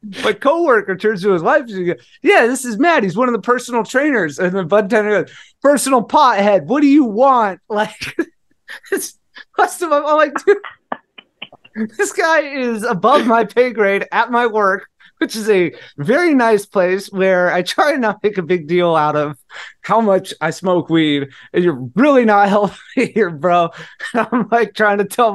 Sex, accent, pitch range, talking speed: male, American, 175-240 Hz, 170 wpm